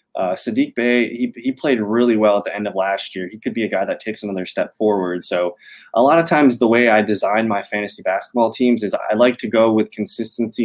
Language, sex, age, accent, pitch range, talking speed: English, male, 20-39, American, 105-125 Hz, 250 wpm